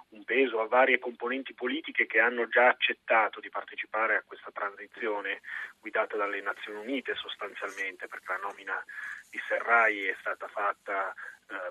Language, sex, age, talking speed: Italian, male, 30-49, 150 wpm